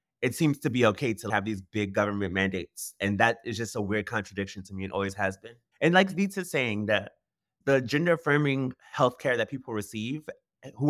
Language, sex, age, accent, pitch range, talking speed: English, male, 20-39, American, 105-140 Hz, 210 wpm